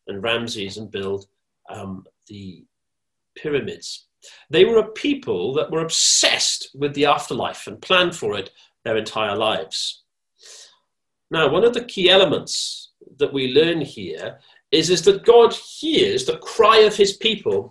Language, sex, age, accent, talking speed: English, male, 40-59, British, 150 wpm